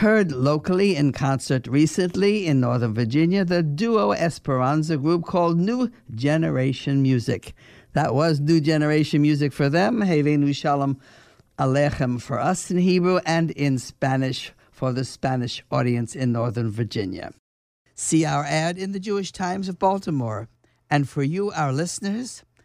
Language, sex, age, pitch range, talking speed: English, male, 60-79, 130-180 Hz, 145 wpm